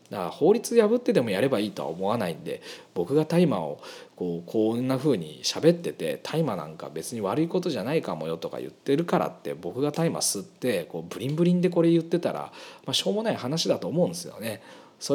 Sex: male